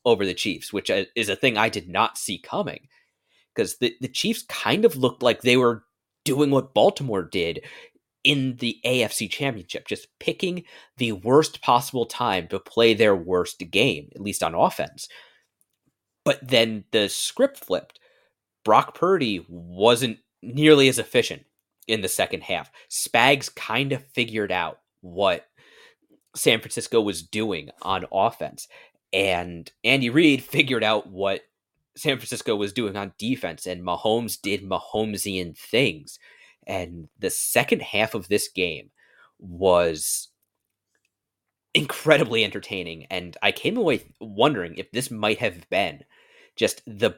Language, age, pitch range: English, 30-49, 100-135 Hz